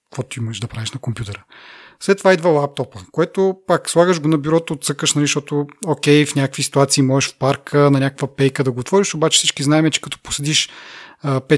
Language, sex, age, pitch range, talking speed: Bulgarian, male, 30-49, 135-155 Hz, 200 wpm